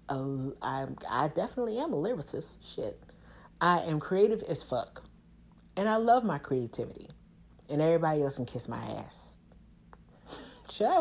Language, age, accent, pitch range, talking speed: English, 40-59, American, 150-210 Hz, 135 wpm